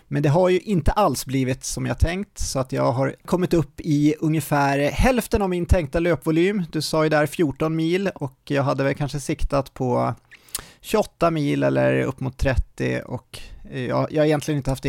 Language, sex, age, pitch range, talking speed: Swedish, male, 30-49, 125-155 Hz, 200 wpm